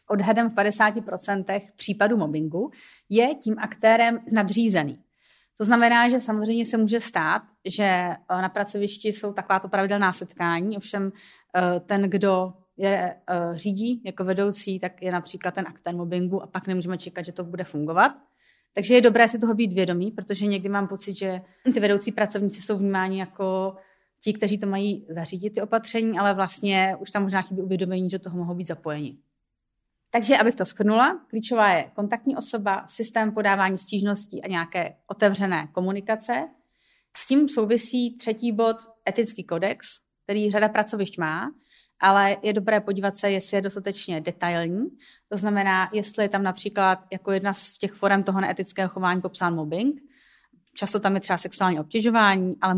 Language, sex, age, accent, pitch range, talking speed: Czech, female, 30-49, native, 185-220 Hz, 160 wpm